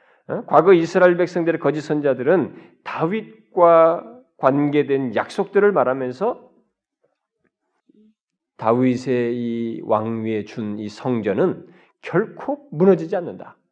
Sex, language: male, Korean